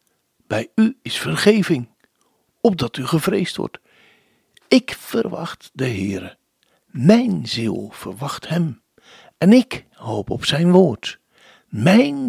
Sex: male